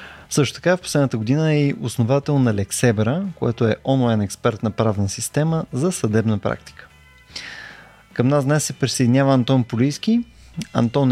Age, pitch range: 20-39, 115-150 Hz